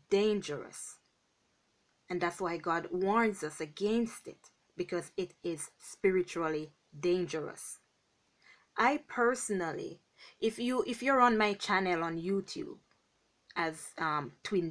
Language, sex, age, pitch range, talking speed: English, female, 20-39, 185-245 Hz, 115 wpm